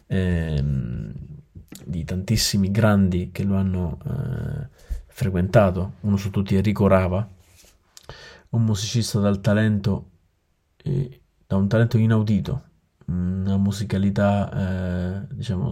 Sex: male